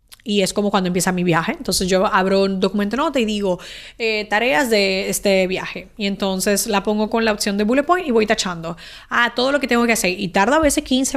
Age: 20-39